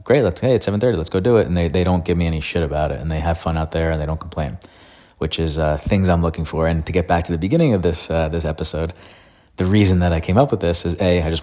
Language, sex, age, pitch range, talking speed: English, male, 30-49, 80-95 Hz, 315 wpm